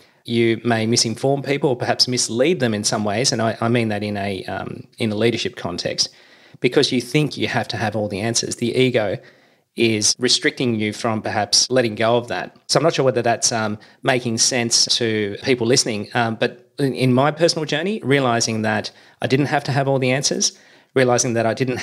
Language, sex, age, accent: English, male, 30-49, Australian